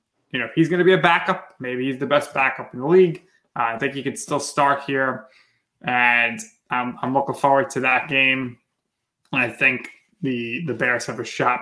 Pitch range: 125-150 Hz